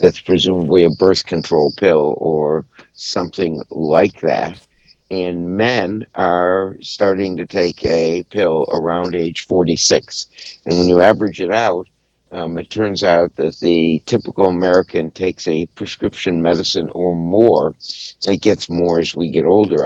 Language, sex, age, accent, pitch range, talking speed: English, male, 60-79, American, 85-95 Hz, 145 wpm